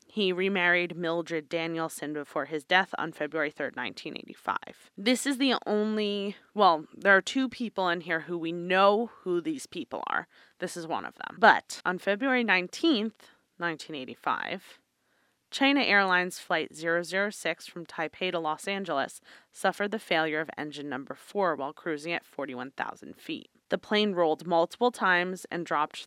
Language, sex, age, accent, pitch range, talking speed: English, female, 20-39, American, 160-200 Hz, 155 wpm